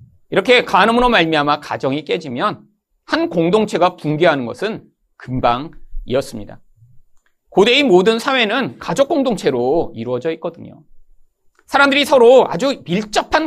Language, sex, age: Korean, male, 40-59